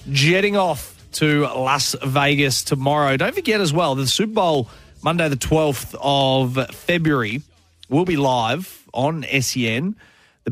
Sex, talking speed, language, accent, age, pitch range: male, 135 wpm, English, Australian, 30-49, 130-155 Hz